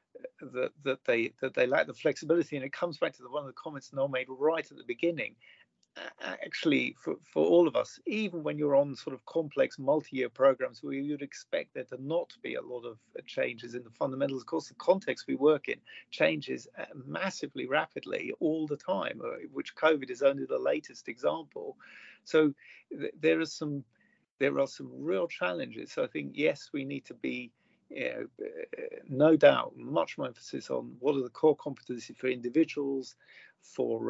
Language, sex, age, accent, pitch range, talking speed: English, male, 40-59, British, 130-165 Hz, 180 wpm